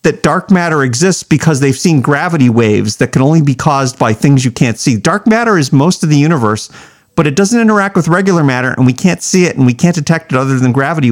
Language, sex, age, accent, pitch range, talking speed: English, male, 40-59, American, 125-170 Hz, 250 wpm